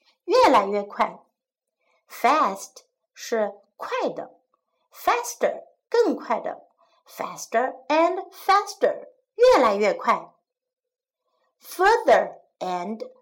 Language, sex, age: Chinese, female, 60-79